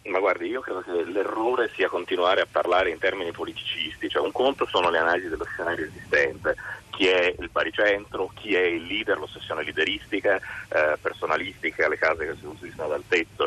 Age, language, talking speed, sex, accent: 30-49, Italian, 185 wpm, male, native